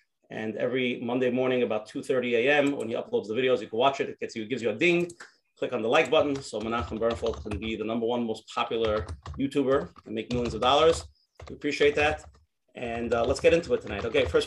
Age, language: 30-49, English